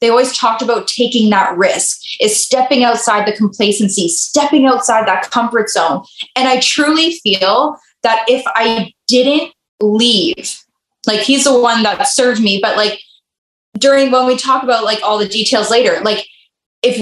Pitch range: 225-275 Hz